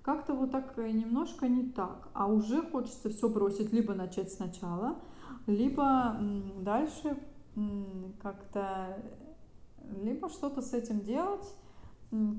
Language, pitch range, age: Russian, 205-265 Hz, 30-49